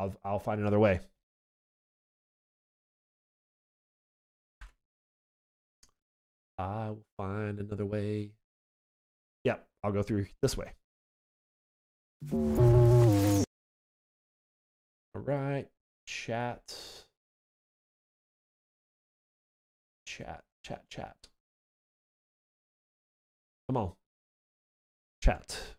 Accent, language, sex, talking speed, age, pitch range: American, English, male, 55 wpm, 30-49, 90-130 Hz